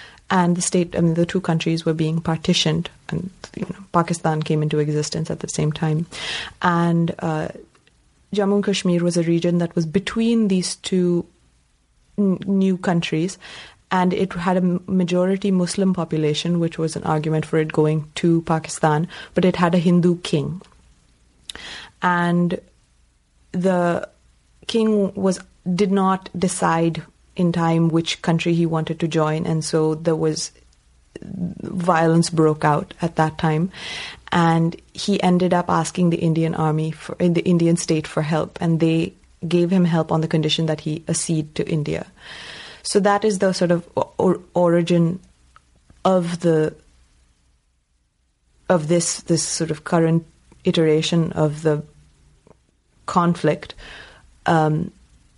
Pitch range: 155-180 Hz